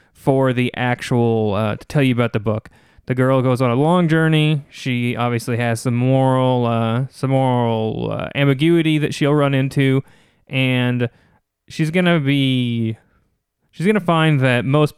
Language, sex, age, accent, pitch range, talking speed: English, male, 30-49, American, 120-145 Hz, 160 wpm